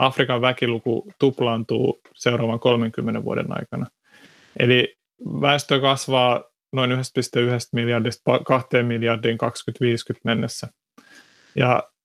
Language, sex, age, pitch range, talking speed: Finnish, male, 30-49, 115-130 Hz, 90 wpm